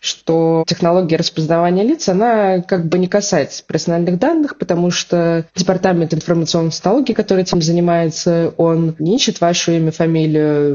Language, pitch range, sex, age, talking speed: Russian, 155-180 Hz, female, 20-39, 140 wpm